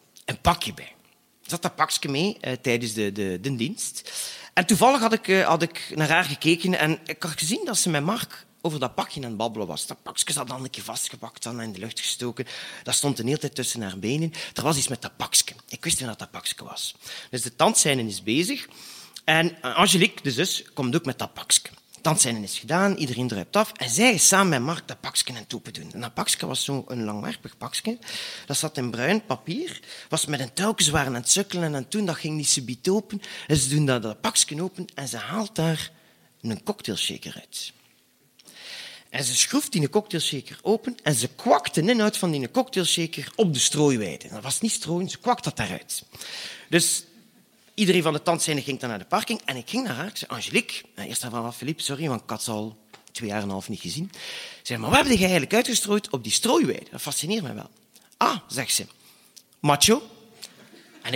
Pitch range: 130-215 Hz